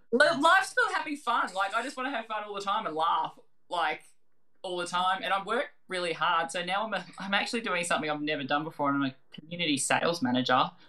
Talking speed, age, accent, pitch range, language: 230 wpm, 20-39, Australian, 145-225 Hz, English